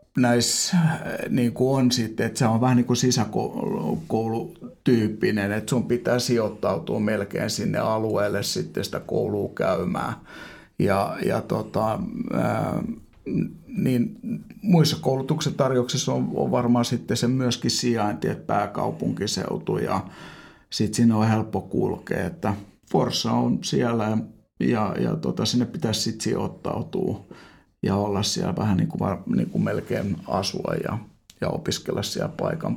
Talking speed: 125 wpm